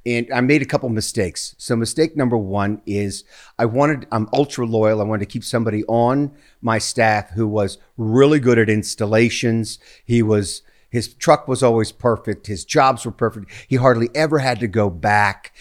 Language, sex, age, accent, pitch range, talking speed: English, male, 50-69, American, 105-135 Hz, 190 wpm